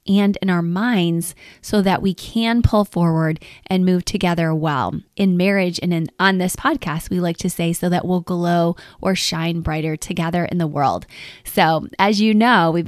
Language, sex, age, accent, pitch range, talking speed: English, female, 20-39, American, 170-225 Hz, 185 wpm